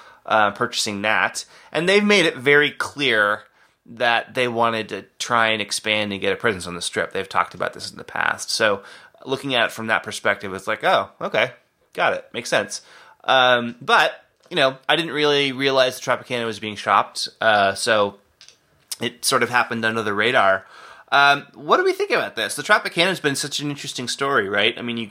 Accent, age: American, 30-49